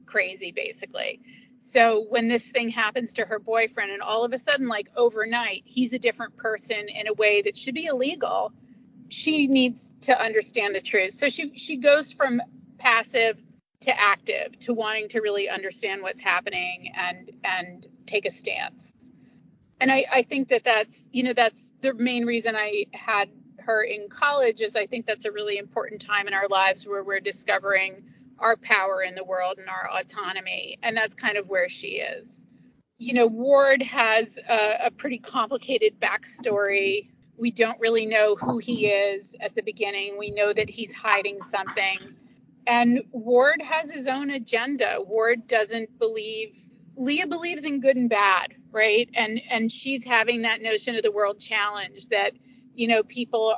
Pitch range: 205-250 Hz